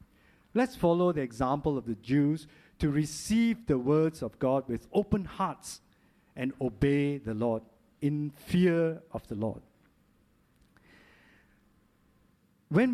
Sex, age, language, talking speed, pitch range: male, 50-69, English, 120 wpm, 135-190 Hz